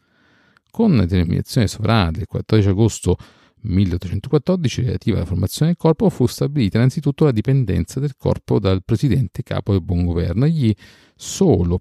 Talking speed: 140 wpm